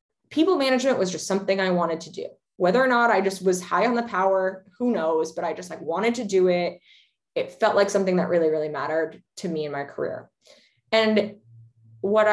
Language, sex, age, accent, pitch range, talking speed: English, female, 20-39, American, 165-210 Hz, 215 wpm